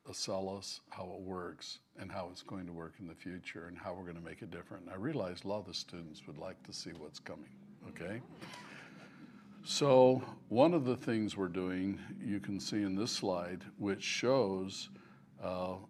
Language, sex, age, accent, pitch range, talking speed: English, male, 60-79, American, 90-105 Hz, 200 wpm